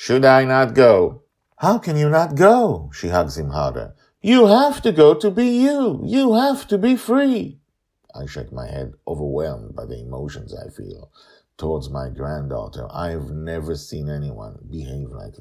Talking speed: 175 wpm